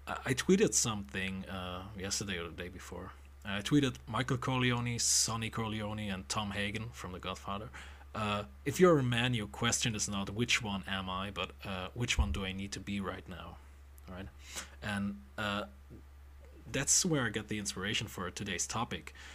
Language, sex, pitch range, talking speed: English, male, 90-120 Hz, 180 wpm